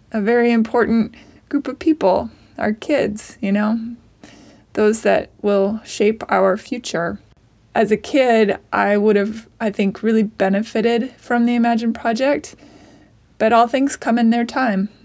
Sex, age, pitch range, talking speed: female, 20-39, 205-245 Hz, 150 wpm